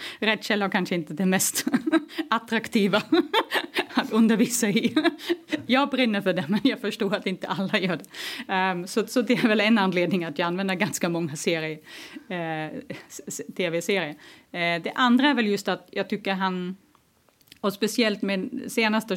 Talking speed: 155 wpm